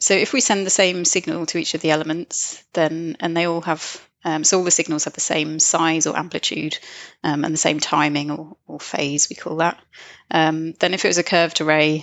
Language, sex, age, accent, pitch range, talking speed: English, female, 30-49, British, 155-175 Hz, 235 wpm